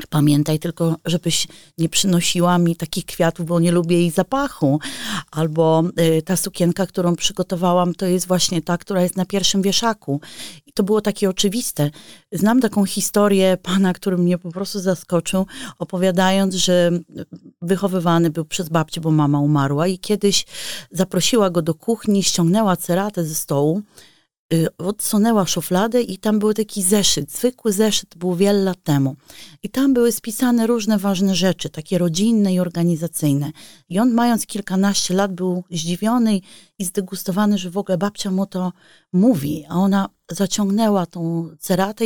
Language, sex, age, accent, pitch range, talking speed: Polish, female, 30-49, native, 170-205 Hz, 150 wpm